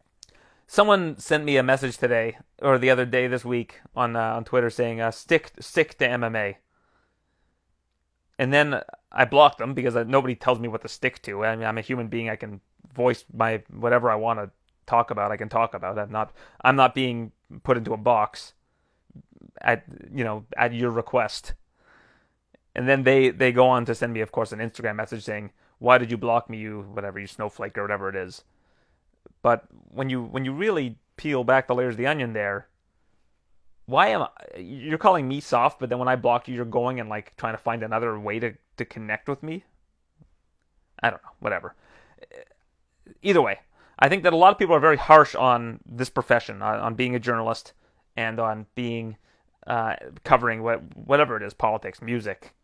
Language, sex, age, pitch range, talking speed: English, male, 30-49, 110-130 Hz, 200 wpm